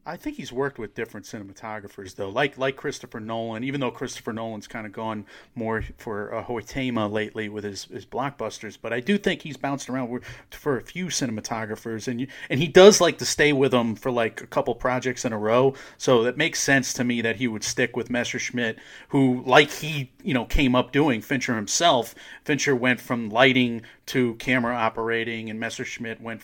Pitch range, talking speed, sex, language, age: 115-135 Hz, 205 wpm, male, English, 40-59